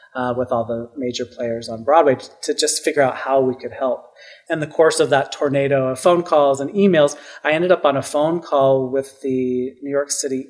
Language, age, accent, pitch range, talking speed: English, 30-49, American, 130-160 Hz, 225 wpm